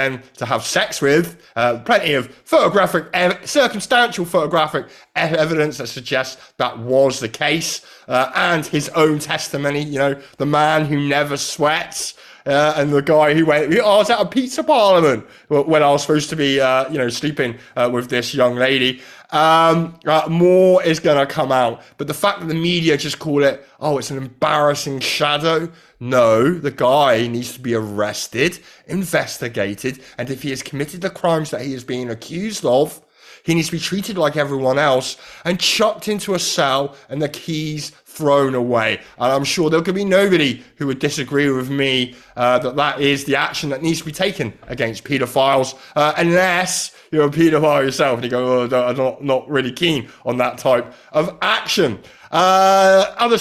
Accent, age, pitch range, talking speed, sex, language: British, 20-39, 135-170 Hz, 185 wpm, male, English